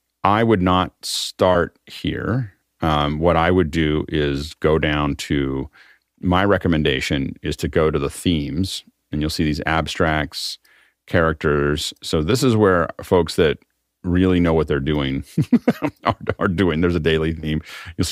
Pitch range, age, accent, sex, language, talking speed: 75-85 Hz, 40-59, American, male, English, 155 wpm